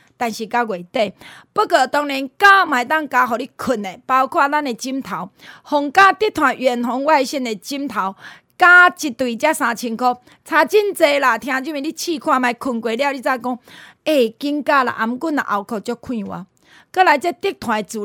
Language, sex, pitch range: Chinese, female, 230-310 Hz